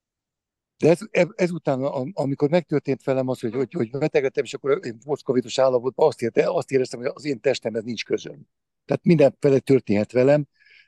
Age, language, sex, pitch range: 60-79, Hungarian, male, 120-155 Hz